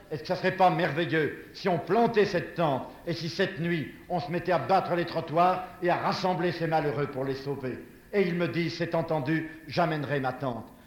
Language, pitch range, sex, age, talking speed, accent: French, 150-175 Hz, male, 60-79, 220 wpm, French